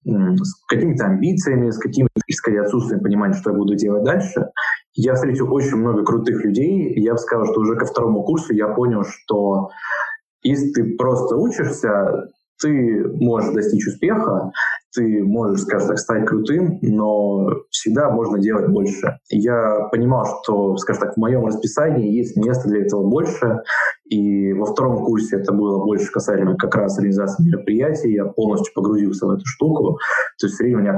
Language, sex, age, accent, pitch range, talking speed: Russian, male, 20-39, native, 105-130 Hz, 165 wpm